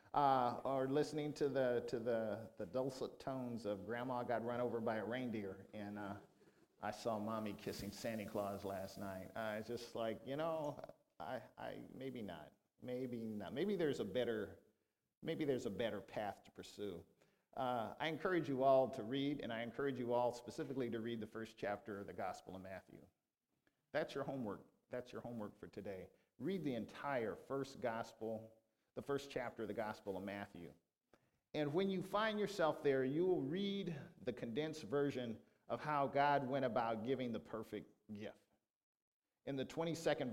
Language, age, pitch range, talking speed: English, 50-69, 110-140 Hz, 180 wpm